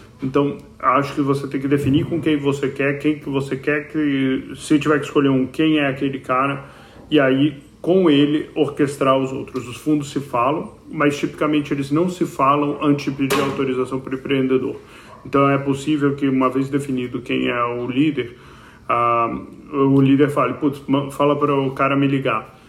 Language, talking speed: Portuguese, 190 wpm